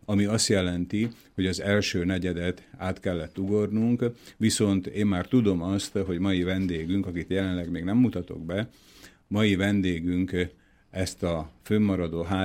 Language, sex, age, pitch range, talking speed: Slovak, male, 50-69, 85-100 Hz, 140 wpm